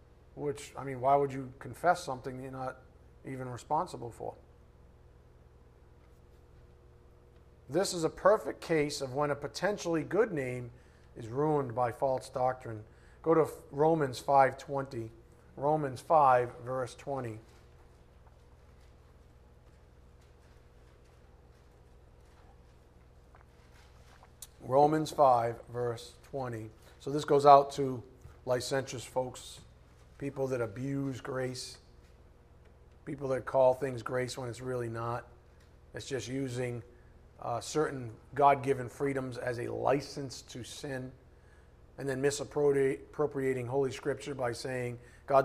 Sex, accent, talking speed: male, American, 105 wpm